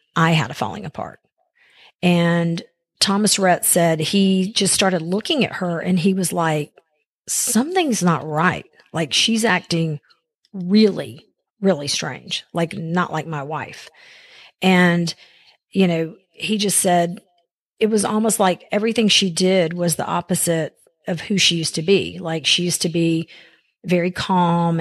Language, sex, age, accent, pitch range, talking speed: English, female, 40-59, American, 165-190 Hz, 150 wpm